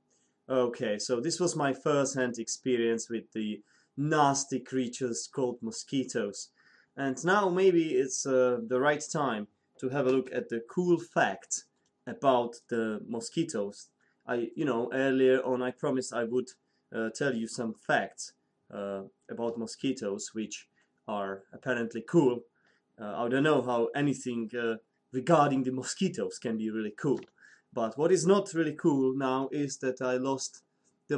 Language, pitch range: English, 115-145 Hz